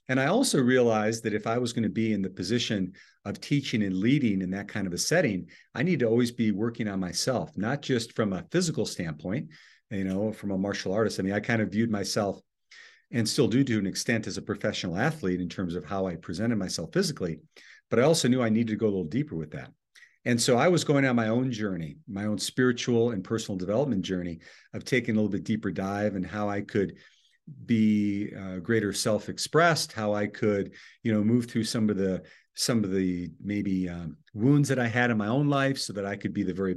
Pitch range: 100-120 Hz